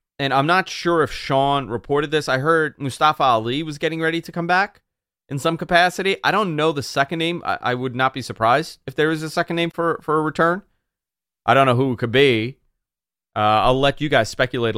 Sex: male